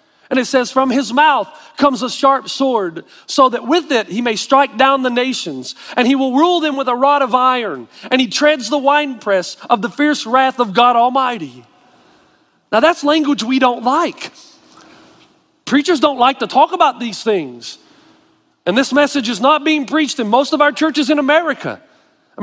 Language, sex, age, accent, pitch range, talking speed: English, male, 40-59, American, 250-310 Hz, 190 wpm